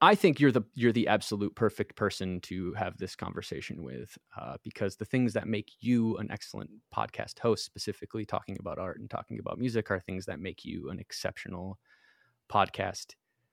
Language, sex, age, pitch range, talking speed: English, male, 20-39, 95-115 Hz, 180 wpm